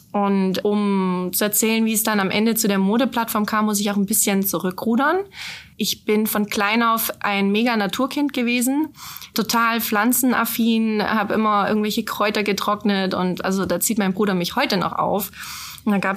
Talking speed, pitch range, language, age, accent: 175 wpm, 195-220 Hz, German, 20-39, German